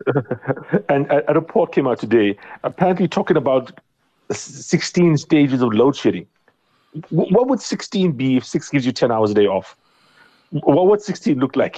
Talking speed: 175 wpm